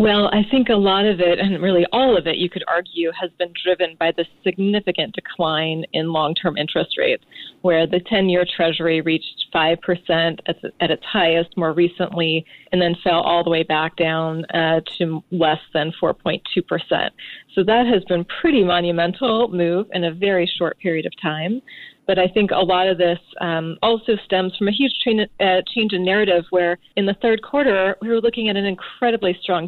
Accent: American